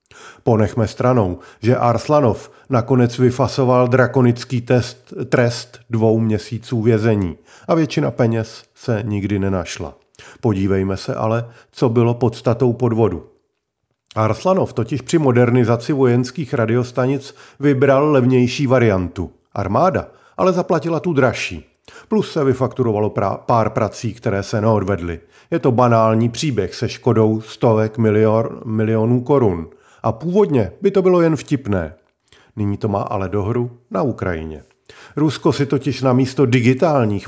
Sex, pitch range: male, 110-135 Hz